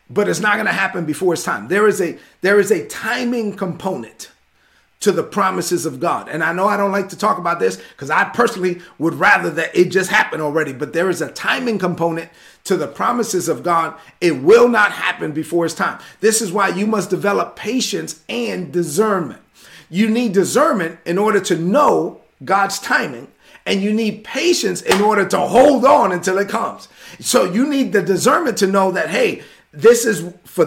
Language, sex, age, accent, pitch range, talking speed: English, male, 40-59, American, 175-220 Hz, 200 wpm